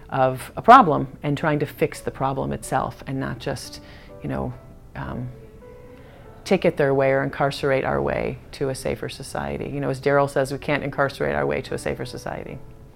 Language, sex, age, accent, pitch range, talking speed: English, female, 40-59, American, 135-175 Hz, 195 wpm